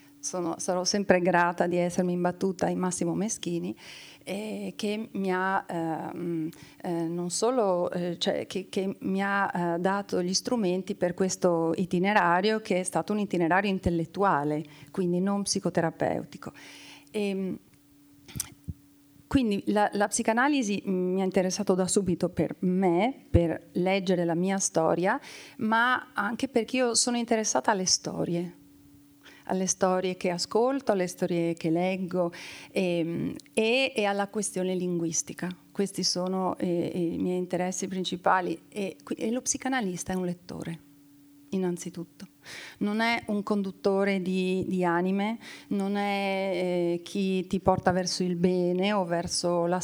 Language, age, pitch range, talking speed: Italian, 40-59, 175-200 Hz, 120 wpm